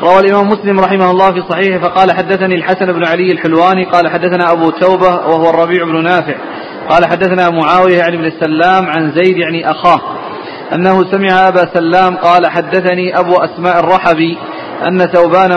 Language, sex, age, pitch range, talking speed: Arabic, male, 40-59, 175-190 Hz, 165 wpm